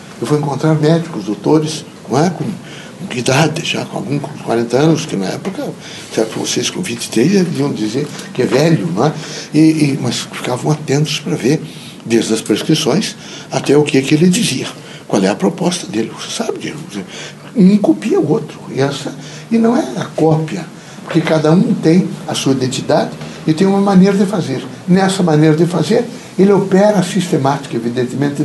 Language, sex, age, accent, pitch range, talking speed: Portuguese, male, 60-79, Brazilian, 150-185 Hz, 190 wpm